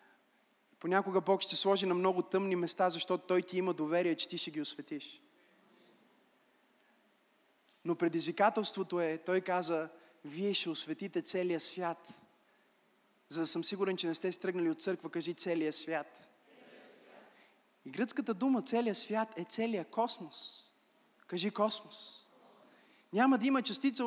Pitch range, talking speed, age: 180-240 Hz, 135 wpm, 30-49